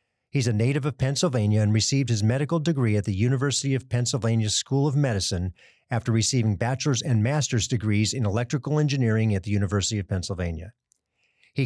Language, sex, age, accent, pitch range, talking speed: English, male, 40-59, American, 105-130 Hz, 170 wpm